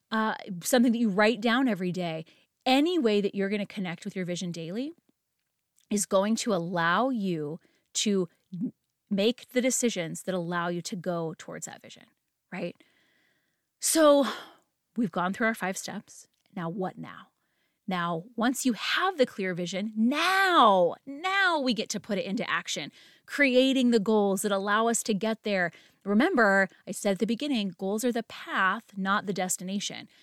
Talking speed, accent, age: 170 wpm, American, 30-49